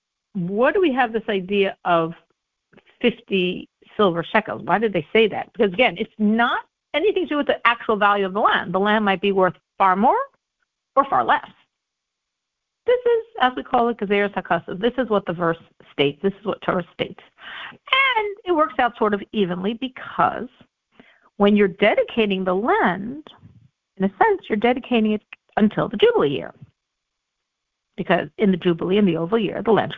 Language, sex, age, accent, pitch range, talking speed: English, female, 50-69, American, 195-275 Hz, 180 wpm